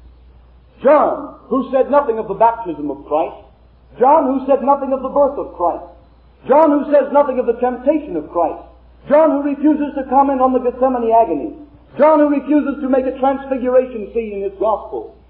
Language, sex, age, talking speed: English, male, 50-69, 185 wpm